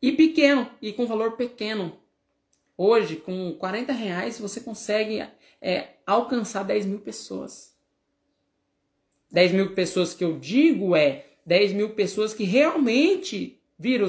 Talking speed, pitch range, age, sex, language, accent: 130 wpm, 190-270 Hz, 20-39, male, Portuguese, Brazilian